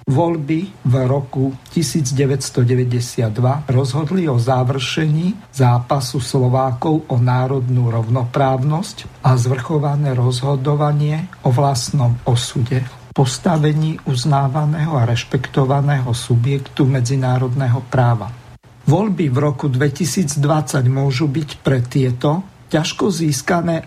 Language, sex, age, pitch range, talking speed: Slovak, male, 50-69, 130-160 Hz, 90 wpm